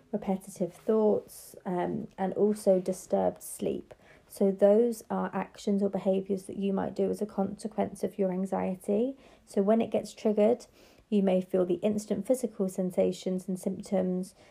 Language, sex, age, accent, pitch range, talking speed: English, female, 30-49, British, 185-210 Hz, 155 wpm